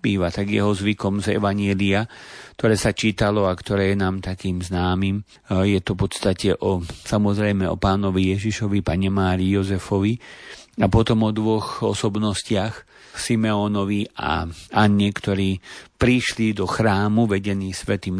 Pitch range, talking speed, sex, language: 95-110 Hz, 130 wpm, male, Slovak